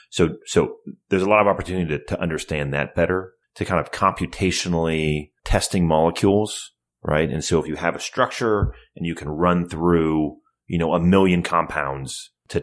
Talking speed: 175 wpm